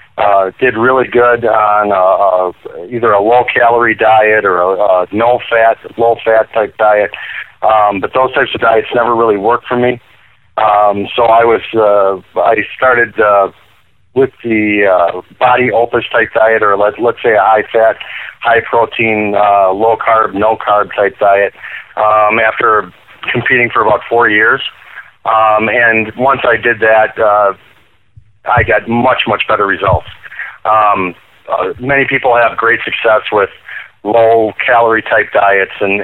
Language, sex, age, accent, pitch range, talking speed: English, male, 40-59, American, 100-120 Hz, 160 wpm